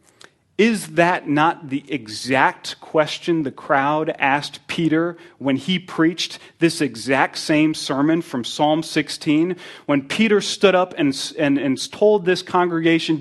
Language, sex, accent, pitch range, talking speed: English, male, American, 155-210 Hz, 135 wpm